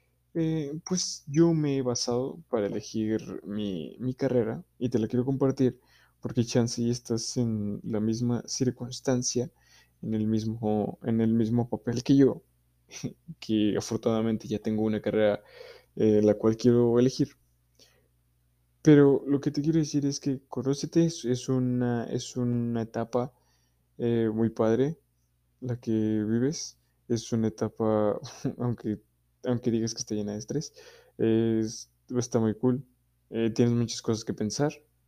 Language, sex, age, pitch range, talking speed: Spanish, male, 20-39, 110-135 Hz, 145 wpm